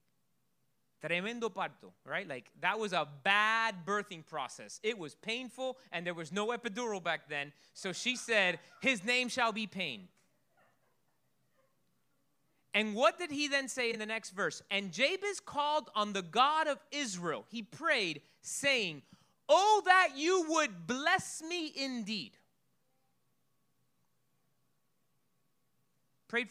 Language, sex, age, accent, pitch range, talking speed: English, male, 30-49, American, 195-285 Hz, 125 wpm